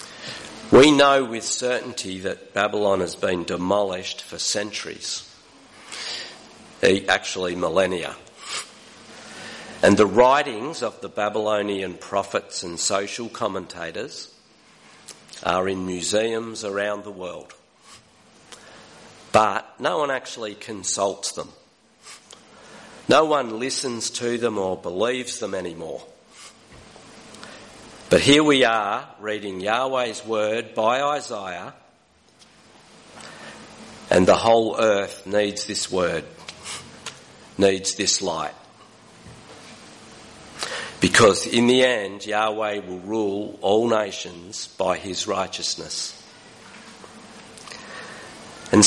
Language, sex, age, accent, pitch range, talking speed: English, male, 50-69, Australian, 95-115 Hz, 95 wpm